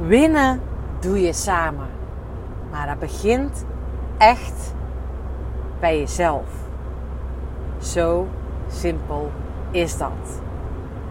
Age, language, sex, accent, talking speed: 30-49, Dutch, female, Dutch, 75 wpm